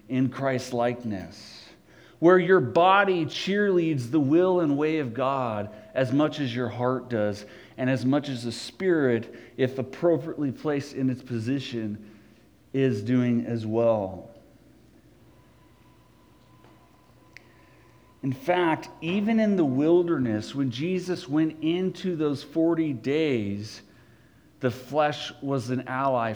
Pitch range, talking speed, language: 130-180 Hz, 120 wpm, English